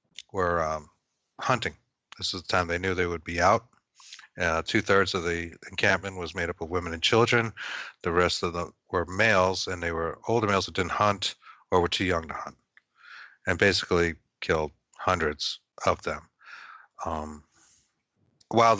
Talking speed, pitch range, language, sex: 170 wpm, 85-100 Hz, English, male